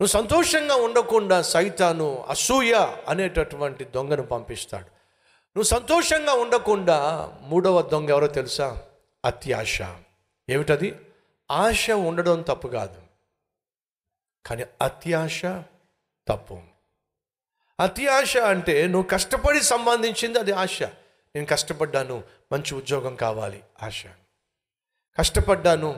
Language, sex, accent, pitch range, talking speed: Telugu, male, native, 120-195 Hz, 90 wpm